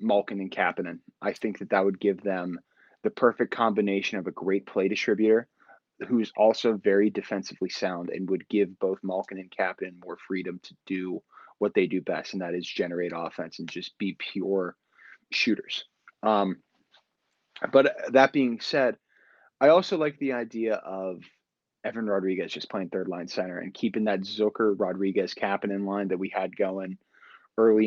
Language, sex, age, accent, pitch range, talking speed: English, male, 20-39, American, 95-110 Hz, 170 wpm